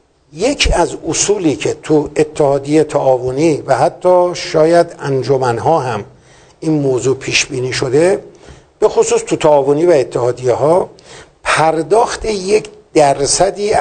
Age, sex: 60-79, male